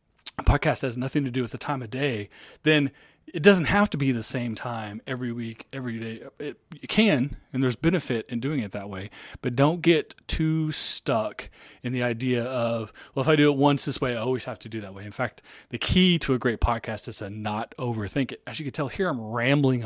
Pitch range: 115-135 Hz